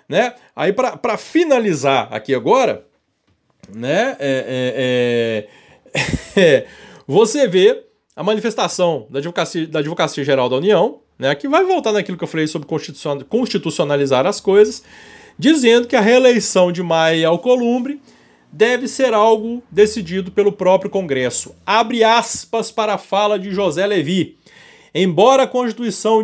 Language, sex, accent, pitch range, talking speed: Portuguese, male, Brazilian, 160-250 Hz, 125 wpm